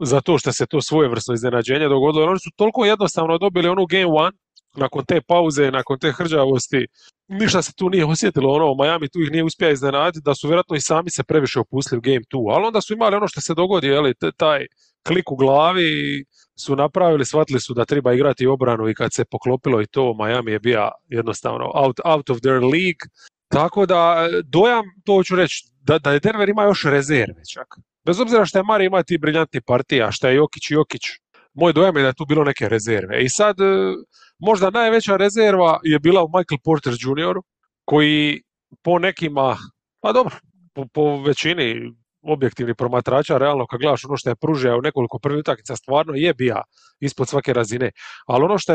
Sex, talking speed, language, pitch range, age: male, 190 wpm, English, 130-175 Hz, 30-49